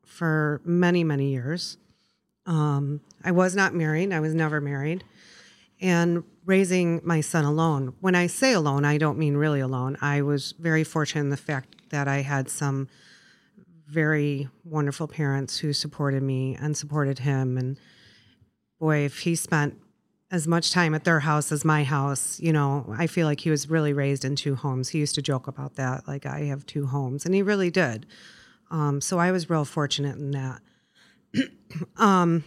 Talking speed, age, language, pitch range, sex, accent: 180 wpm, 30-49, English, 140-170 Hz, female, American